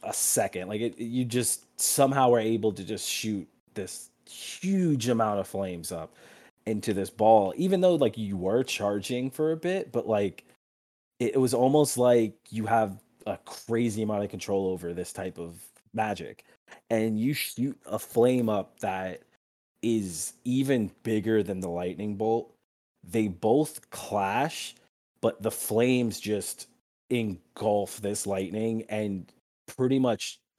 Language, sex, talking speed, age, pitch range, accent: English, male, 145 wpm, 20-39, 100-120 Hz, American